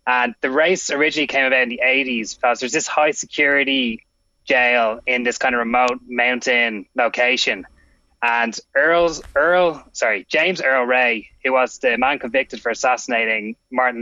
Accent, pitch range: Irish, 120-135 Hz